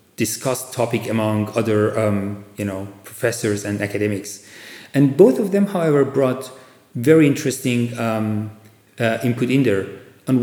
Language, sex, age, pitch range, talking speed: English, male, 40-59, 110-140 Hz, 125 wpm